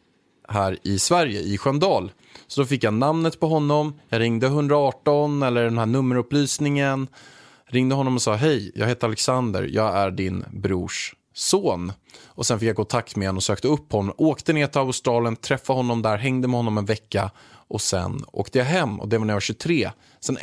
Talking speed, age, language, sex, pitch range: 205 wpm, 20-39, Swedish, male, 105-135 Hz